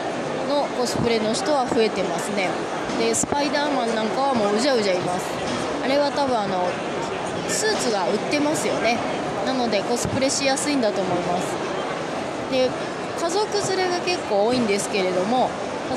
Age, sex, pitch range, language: 20-39, female, 210-275 Hz, Japanese